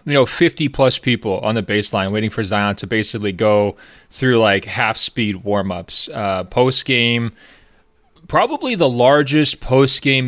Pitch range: 100-120 Hz